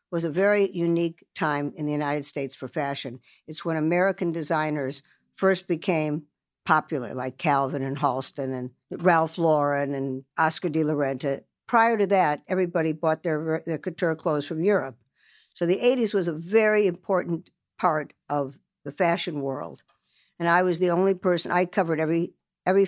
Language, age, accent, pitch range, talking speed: English, 60-79, American, 150-180 Hz, 165 wpm